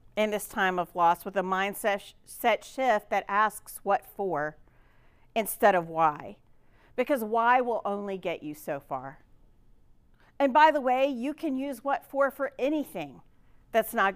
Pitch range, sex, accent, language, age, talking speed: 195-275 Hz, female, American, English, 40-59, 155 wpm